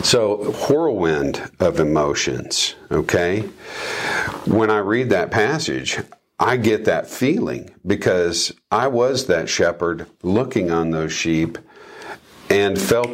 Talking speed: 115 wpm